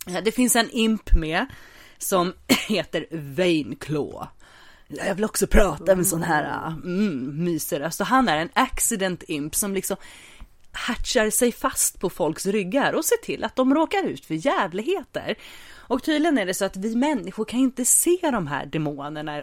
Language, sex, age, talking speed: English, female, 30-49, 170 wpm